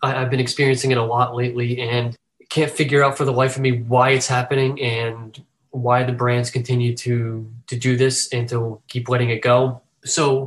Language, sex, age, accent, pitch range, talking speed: English, male, 20-39, American, 125-140 Hz, 200 wpm